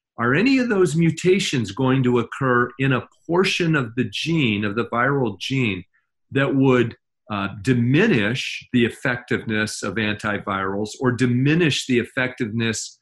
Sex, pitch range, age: male, 110-140 Hz, 40-59